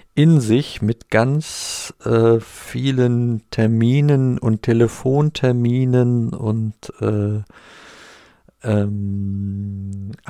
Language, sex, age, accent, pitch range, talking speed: German, male, 50-69, German, 100-120 Hz, 70 wpm